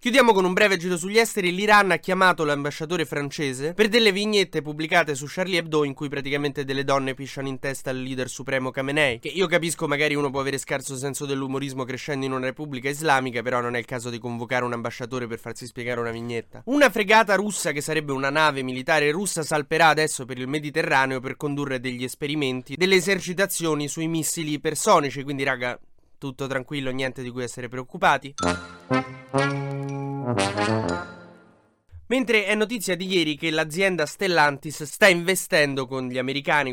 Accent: native